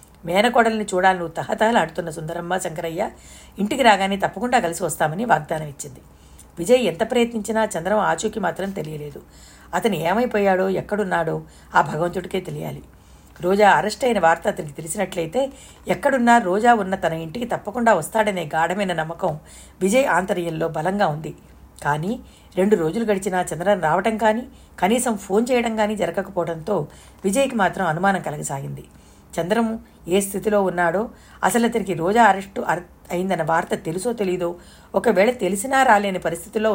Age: 60-79